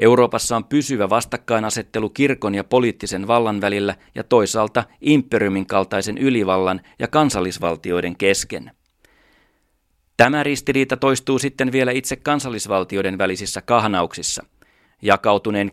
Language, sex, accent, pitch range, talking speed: Finnish, male, native, 100-125 Hz, 105 wpm